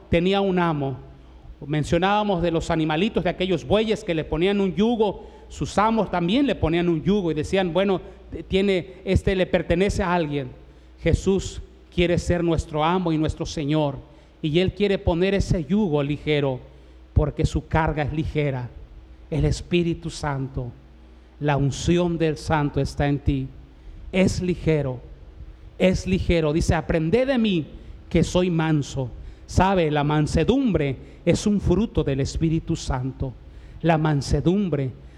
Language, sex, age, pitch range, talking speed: Spanish, male, 40-59, 145-190 Hz, 140 wpm